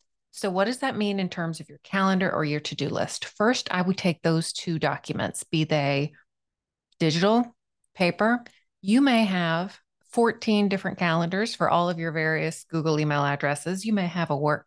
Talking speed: 180 wpm